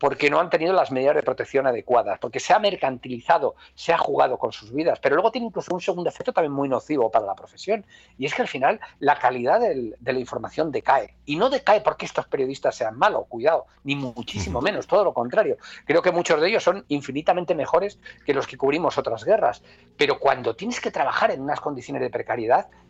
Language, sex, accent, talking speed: Spanish, male, Spanish, 215 wpm